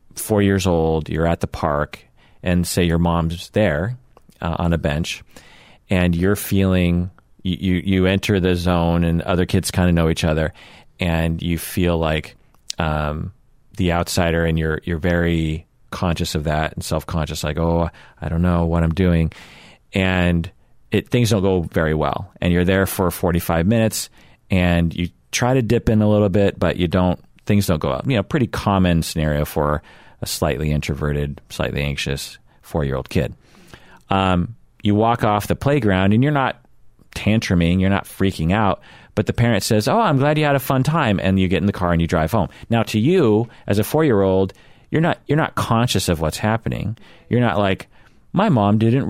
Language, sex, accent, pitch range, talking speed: English, male, American, 85-110 Hz, 190 wpm